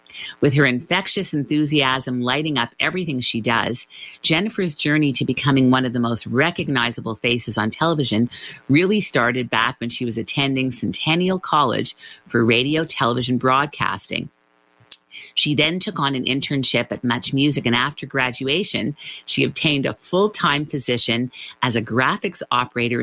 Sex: female